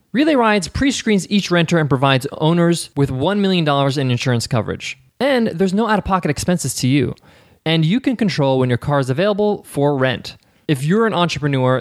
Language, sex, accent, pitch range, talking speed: English, male, American, 130-185 Hz, 185 wpm